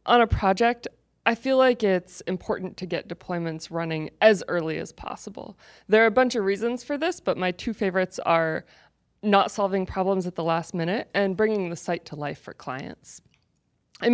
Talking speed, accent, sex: 190 wpm, American, female